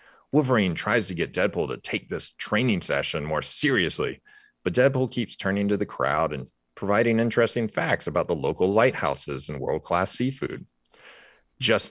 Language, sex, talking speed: English, male, 155 wpm